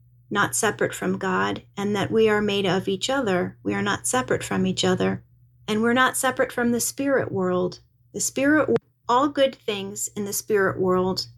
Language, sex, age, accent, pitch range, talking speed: English, female, 30-49, American, 170-230 Hz, 195 wpm